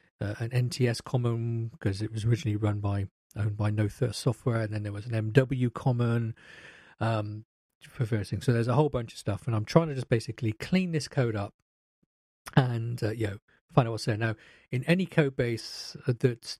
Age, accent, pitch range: 40-59, British, 115-140 Hz